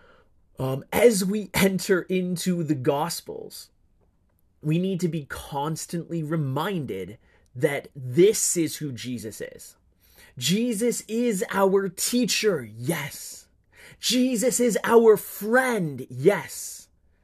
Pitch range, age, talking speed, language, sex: 145-200 Hz, 30-49, 100 wpm, English, male